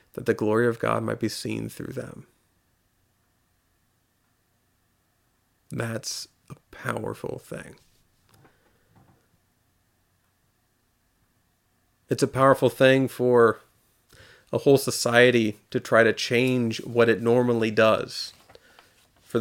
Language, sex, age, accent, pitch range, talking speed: English, male, 40-59, American, 115-135 Hz, 95 wpm